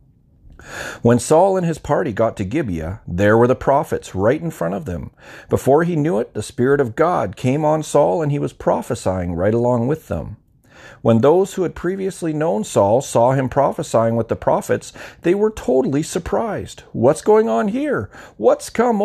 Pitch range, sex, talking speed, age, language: 105-165 Hz, male, 185 wpm, 40-59, English